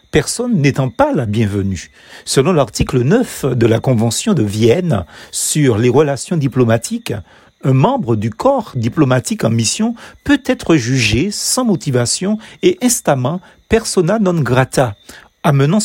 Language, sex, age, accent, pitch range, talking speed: French, male, 40-59, French, 125-200 Hz, 135 wpm